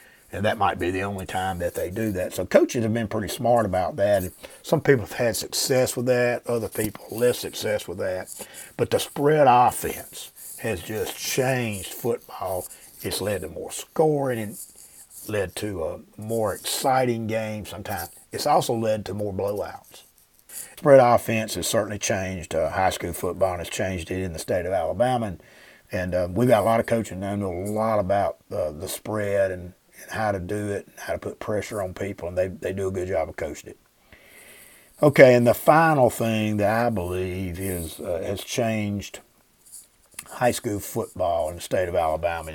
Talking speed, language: 195 wpm, English